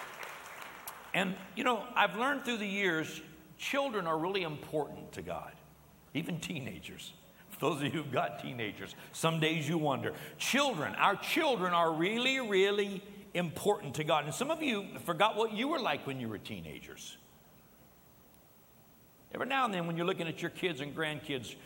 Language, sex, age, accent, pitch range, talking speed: English, male, 60-79, American, 160-225 Hz, 165 wpm